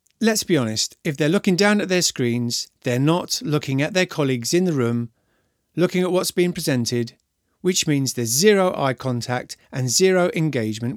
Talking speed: 180 wpm